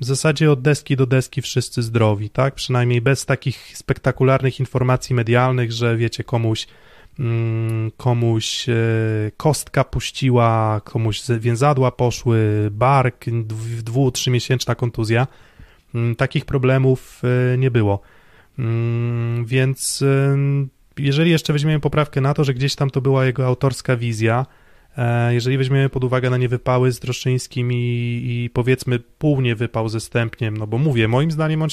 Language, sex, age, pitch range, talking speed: Polish, male, 20-39, 115-135 Hz, 130 wpm